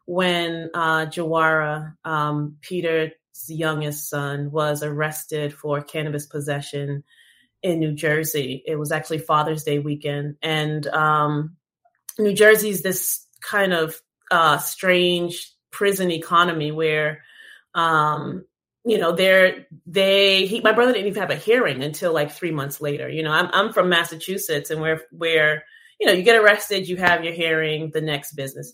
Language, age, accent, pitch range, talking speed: English, 30-49, American, 150-175 Hz, 145 wpm